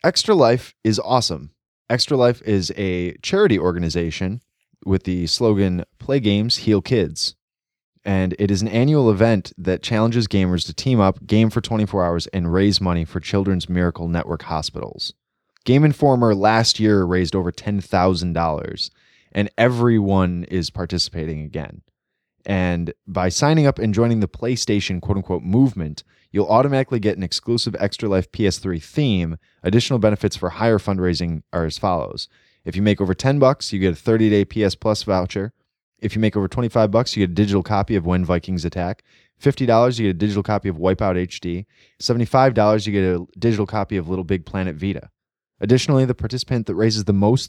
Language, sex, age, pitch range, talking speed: English, male, 20-39, 90-115 Hz, 170 wpm